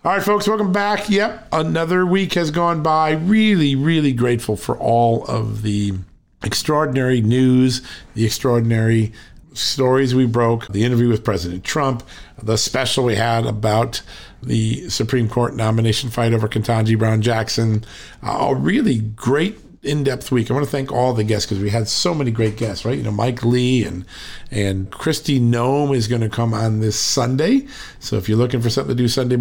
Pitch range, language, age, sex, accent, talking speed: 110-140 Hz, English, 50-69, male, American, 180 wpm